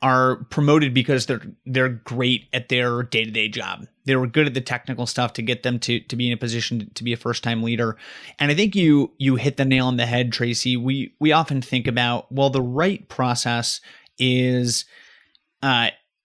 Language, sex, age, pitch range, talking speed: English, male, 30-49, 120-140 Hz, 205 wpm